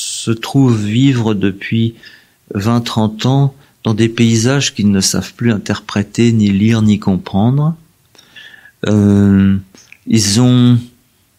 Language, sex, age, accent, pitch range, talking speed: French, male, 50-69, French, 100-125 Hz, 110 wpm